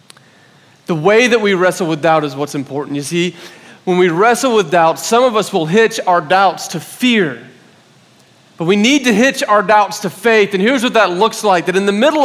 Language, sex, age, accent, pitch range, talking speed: English, male, 30-49, American, 155-225 Hz, 220 wpm